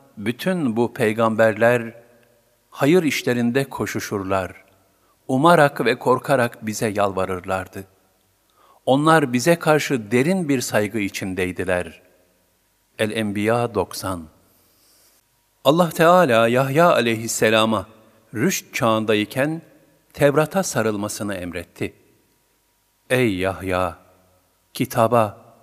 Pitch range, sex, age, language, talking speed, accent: 95-130 Hz, male, 50-69, Turkish, 75 wpm, native